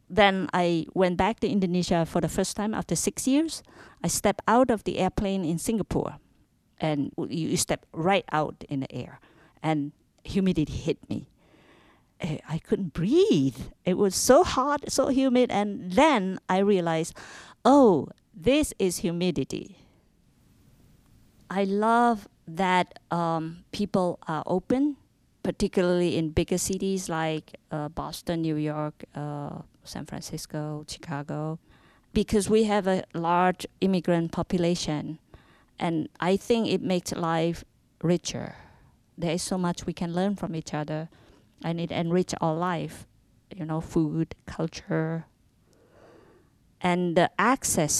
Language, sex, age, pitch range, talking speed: English, female, 50-69, 155-200 Hz, 135 wpm